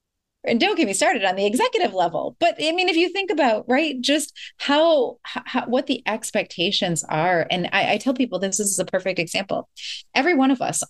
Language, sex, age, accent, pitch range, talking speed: English, female, 30-49, American, 180-260 Hz, 215 wpm